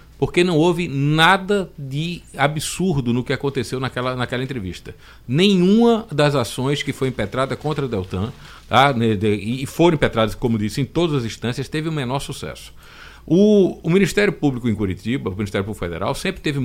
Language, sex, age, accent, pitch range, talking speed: Portuguese, male, 50-69, Brazilian, 115-175 Hz, 165 wpm